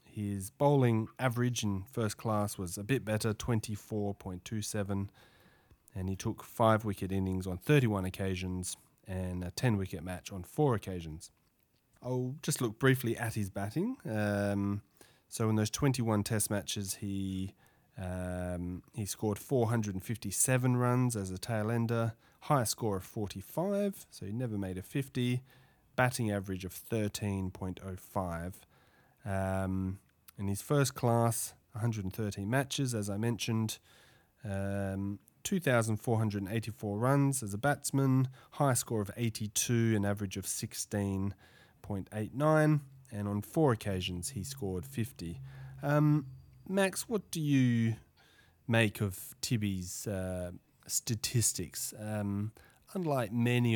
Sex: male